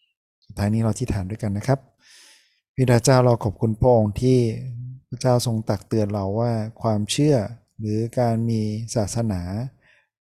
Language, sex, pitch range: Thai, male, 105-120 Hz